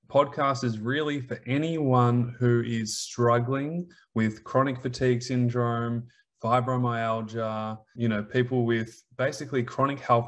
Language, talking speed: English, 115 wpm